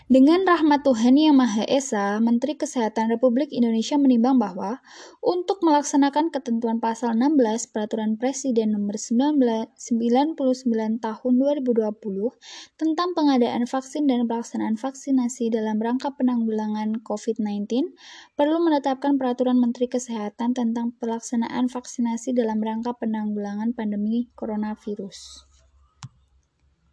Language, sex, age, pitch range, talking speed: Indonesian, female, 10-29, 220-265 Hz, 105 wpm